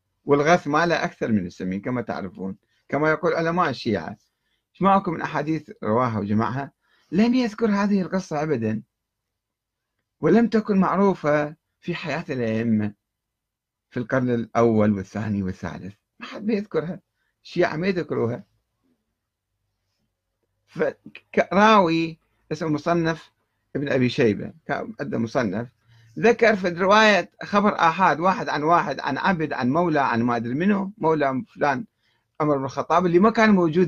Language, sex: Arabic, male